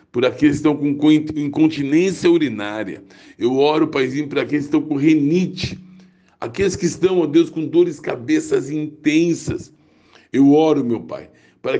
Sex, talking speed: male, 155 wpm